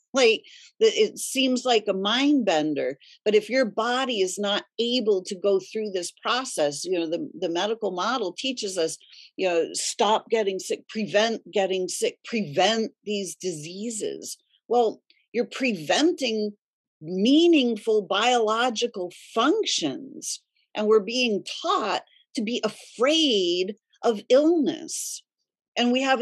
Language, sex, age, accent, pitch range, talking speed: English, female, 50-69, American, 210-315 Hz, 130 wpm